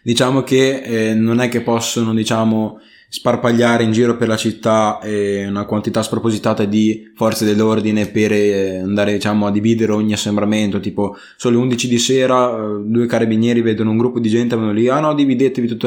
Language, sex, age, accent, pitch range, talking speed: Italian, male, 20-39, native, 105-120 Hz, 185 wpm